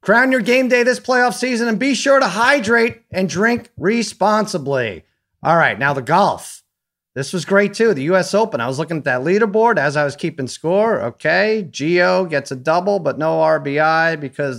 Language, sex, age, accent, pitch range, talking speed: English, male, 30-49, American, 140-205 Hz, 195 wpm